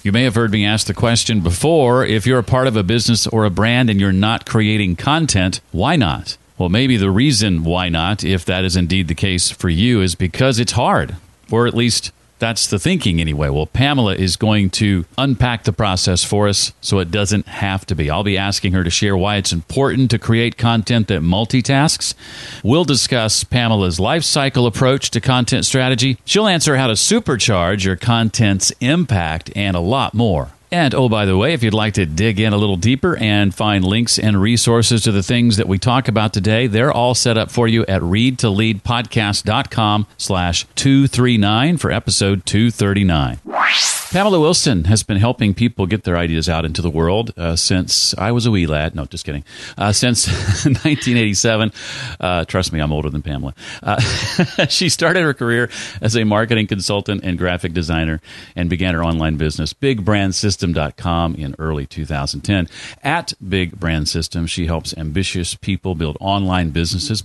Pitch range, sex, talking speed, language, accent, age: 90-120 Hz, male, 185 wpm, English, American, 40-59